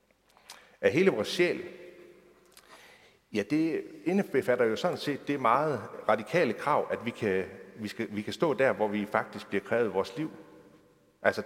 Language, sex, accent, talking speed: Danish, male, native, 160 wpm